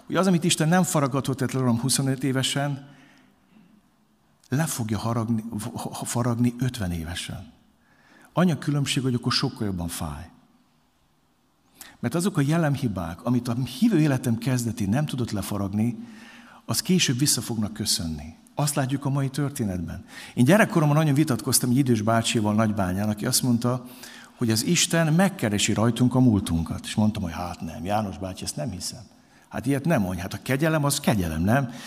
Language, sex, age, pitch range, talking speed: Hungarian, male, 60-79, 110-175 Hz, 155 wpm